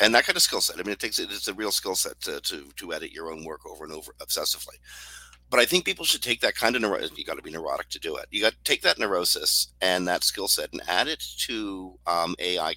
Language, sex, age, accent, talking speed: English, male, 50-69, American, 285 wpm